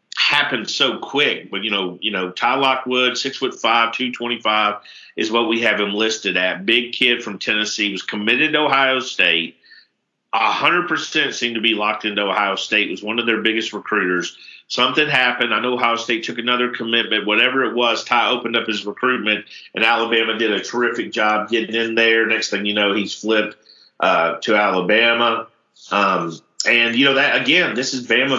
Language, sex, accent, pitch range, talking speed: English, male, American, 105-125 Hz, 190 wpm